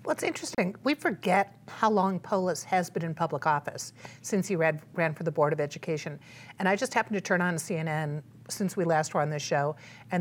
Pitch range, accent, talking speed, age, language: 155-190 Hz, American, 225 wpm, 50-69, English